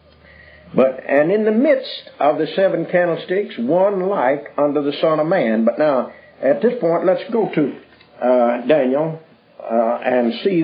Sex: male